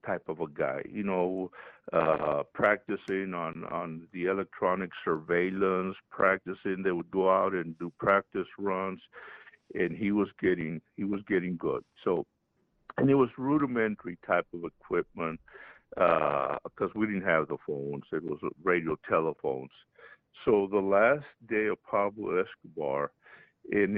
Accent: American